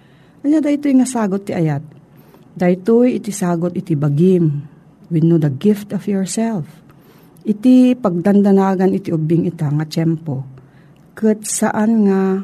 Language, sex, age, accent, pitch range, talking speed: Filipino, female, 50-69, native, 165-215 Hz, 130 wpm